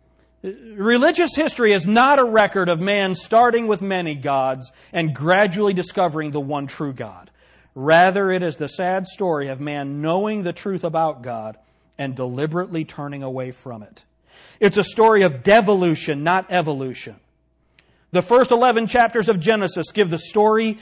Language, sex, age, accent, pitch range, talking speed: English, male, 40-59, American, 130-195 Hz, 155 wpm